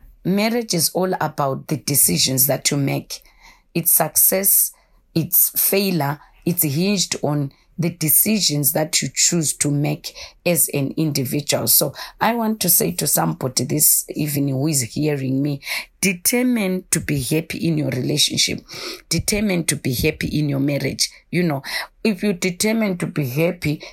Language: English